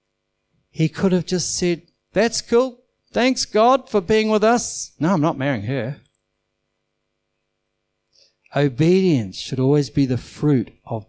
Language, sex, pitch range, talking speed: English, male, 110-145 Hz, 135 wpm